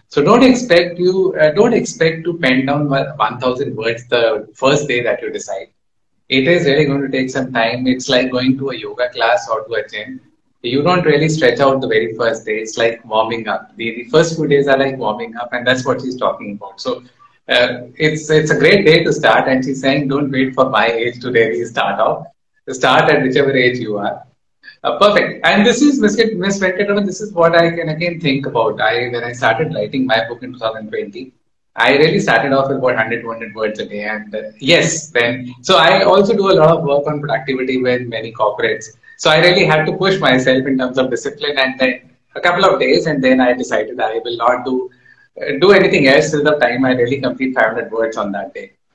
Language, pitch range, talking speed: English, 120-170 Hz, 230 wpm